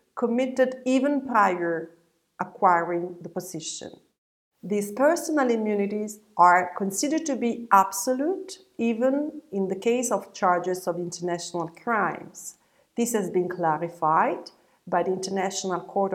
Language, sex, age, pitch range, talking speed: English, female, 50-69, 175-215 Hz, 120 wpm